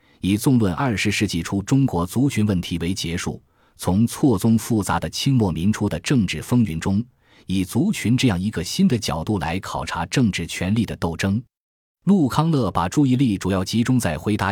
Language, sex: Chinese, male